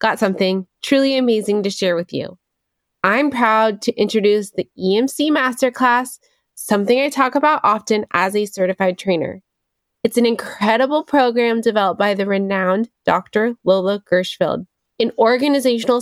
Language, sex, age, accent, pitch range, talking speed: English, female, 20-39, American, 190-235 Hz, 140 wpm